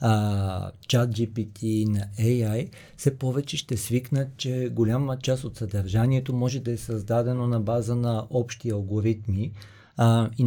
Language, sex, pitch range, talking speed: Bulgarian, male, 110-125 Hz, 145 wpm